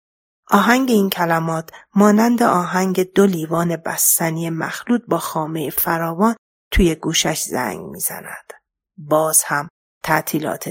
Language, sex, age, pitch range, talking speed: Persian, female, 40-59, 165-195 Hz, 105 wpm